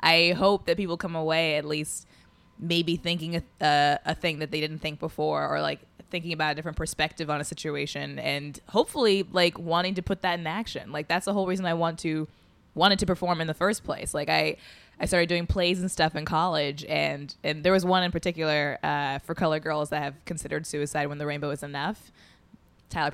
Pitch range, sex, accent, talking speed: 150-180 Hz, female, American, 215 wpm